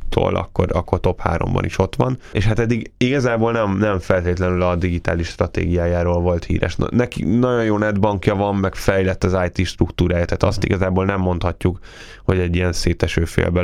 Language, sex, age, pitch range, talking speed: Hungarian, male, 10-29, 90-105 Hz, 165 wpm